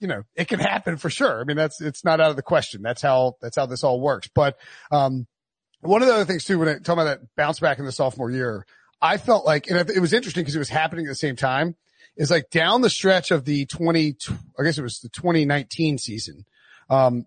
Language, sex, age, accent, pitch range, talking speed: English, male, 30-49, American, 140-175 Hz, 255 wpm